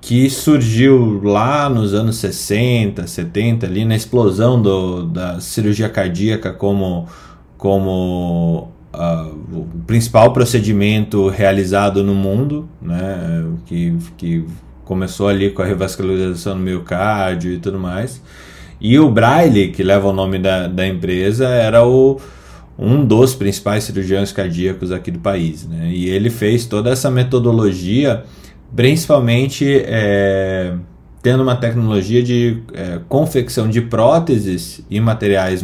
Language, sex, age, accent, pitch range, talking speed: Portuguese, male, 20-39, Brazilian, 95-120 Hz, 120 wpm